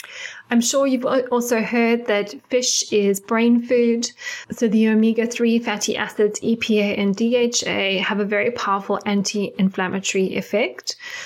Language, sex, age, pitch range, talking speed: English, female, 10-29, 200-240 Hz, 130 wpm